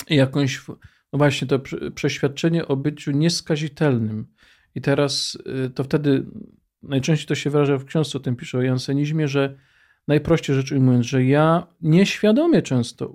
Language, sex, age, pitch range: Polish, male, 40-59, 125-150 Hz